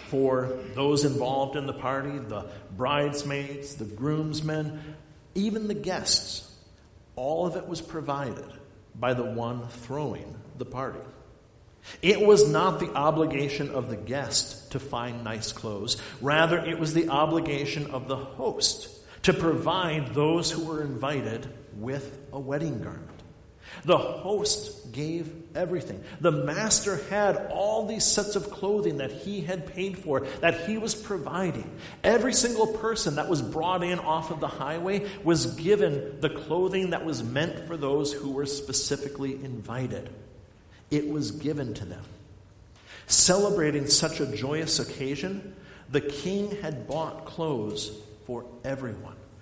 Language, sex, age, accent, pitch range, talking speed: English, male, 50-69, American, 130-175 Hz, 140 wpm